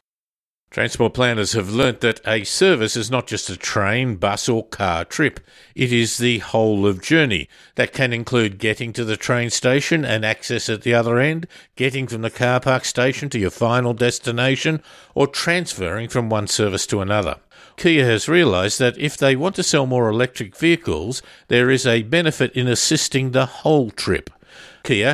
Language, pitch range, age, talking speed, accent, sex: English, 110-135 Hz, 50-69, 180 wpm, Australian, male